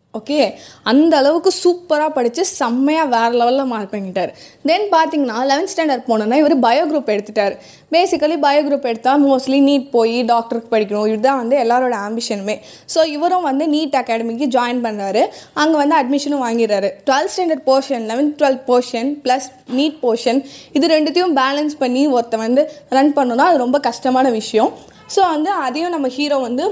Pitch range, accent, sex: 235-300 Hz, Indian, female